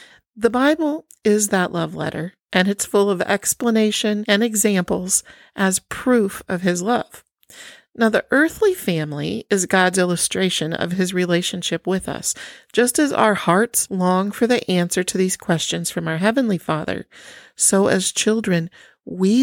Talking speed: 150 wpm